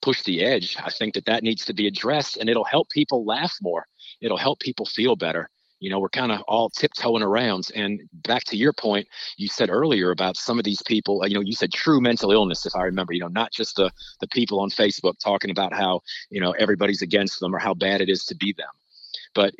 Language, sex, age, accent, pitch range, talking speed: English, male, 40-59, American, 100-135 Hz, 240 wpm